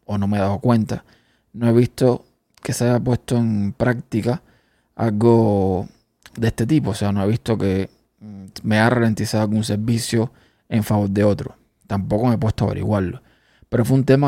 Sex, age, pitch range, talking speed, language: male, 20-39, 105-120 Hz, 185 wpm, Spanish